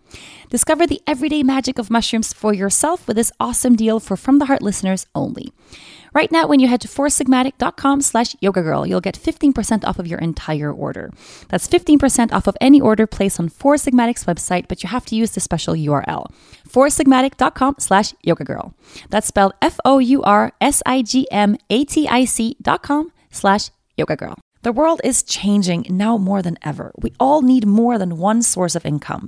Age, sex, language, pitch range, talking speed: 20-39, female, English, 185-260 Hz, 170 wpm